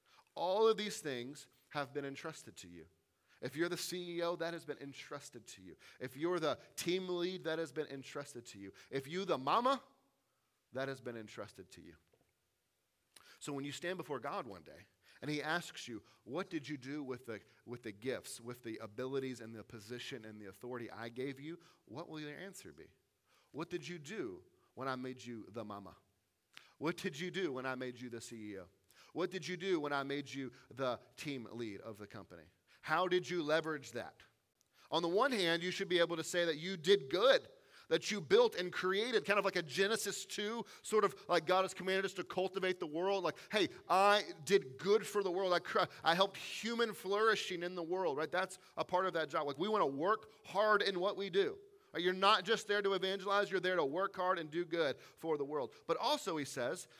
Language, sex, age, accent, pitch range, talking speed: English, male, 30-49, American, 135-200 Hz, 215 wpm